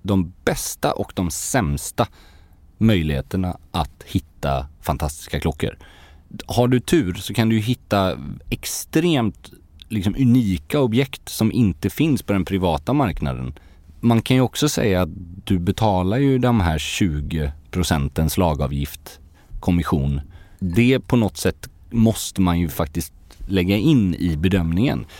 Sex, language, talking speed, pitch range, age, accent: male, English, 125 wpm, 80-110 Hz, 30-49, Swedish